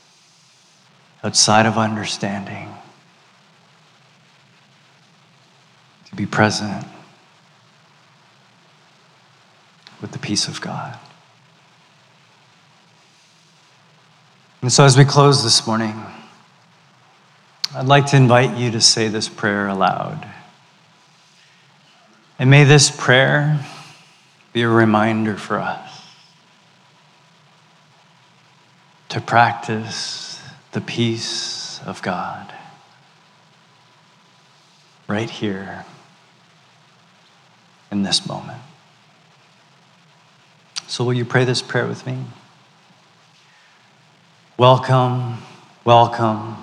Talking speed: 75 wpm